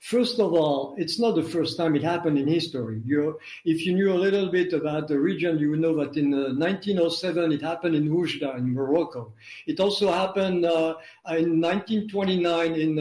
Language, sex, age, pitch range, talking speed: English, male, 60-79, 150-175 Hz, 190 wpm